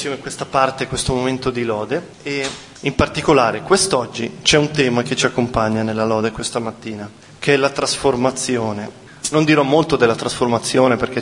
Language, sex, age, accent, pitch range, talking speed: Italian, male, 30-49, native, 115-145 Hz, 170 wpm